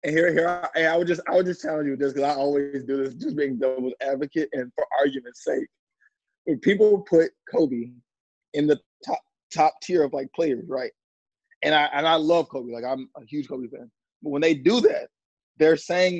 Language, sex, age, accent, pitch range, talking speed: English, male, 20-39, American, 145-185 Hz, 220 wpm